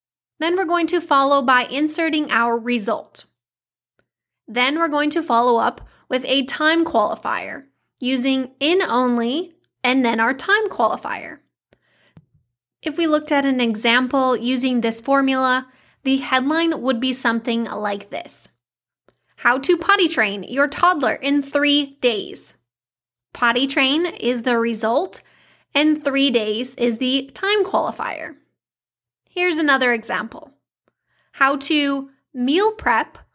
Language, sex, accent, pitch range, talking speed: English, female, American, 240-310 Hz, 130 wpm